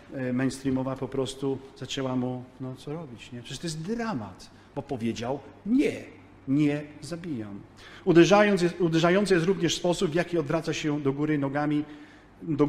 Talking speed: 150 wpm